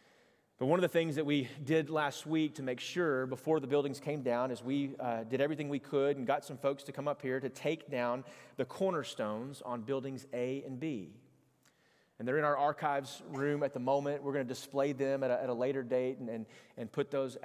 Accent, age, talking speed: American, 30-49, 225 wpm